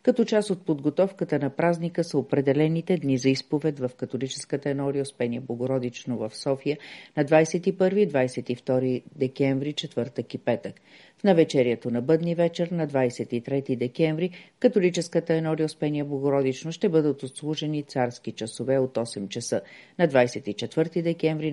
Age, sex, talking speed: 40-59, female, 130 wpm